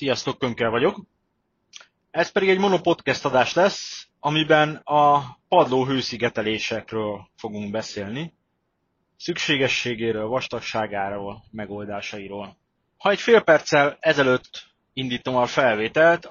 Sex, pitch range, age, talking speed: male, 110-145 Hz, 30-49, 95 wpm